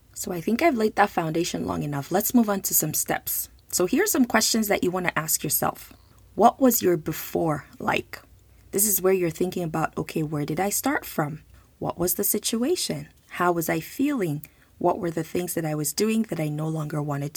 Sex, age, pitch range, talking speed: female, 20-39, 160-205 Hz, 220 wpm